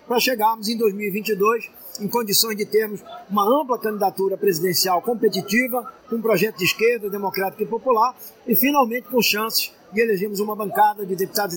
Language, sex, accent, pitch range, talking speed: Portuguese, male, Brazilian, 200-240 Hz, 160 wpm